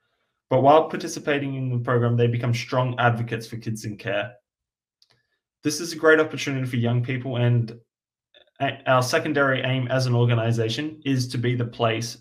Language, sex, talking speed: English, male, 165 wpm